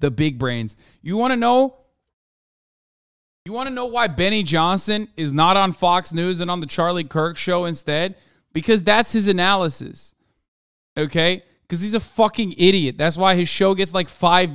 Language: English